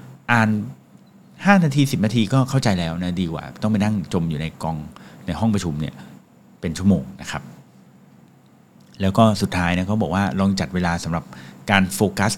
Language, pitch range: English, 90-115 Hz